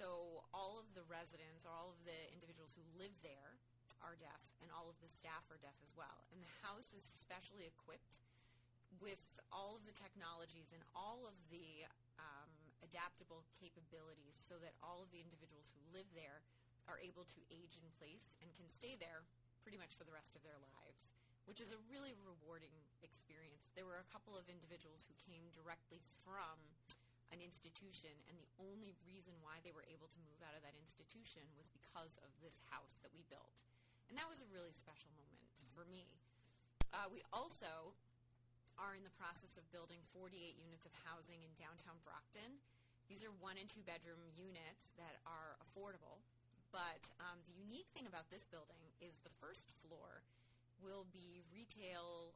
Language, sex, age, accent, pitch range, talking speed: English, female, 30-49, American, 145-175 Hz, 180 wpm